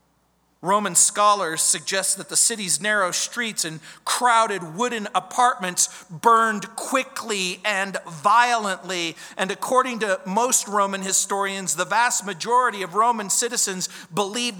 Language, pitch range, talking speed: English, 150-210 Hz, 120 wpm